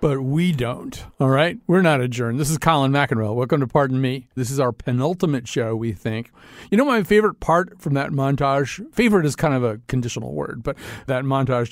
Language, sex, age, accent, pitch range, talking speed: English, male, 50-69, American, 130-195 Hz, 205 wpm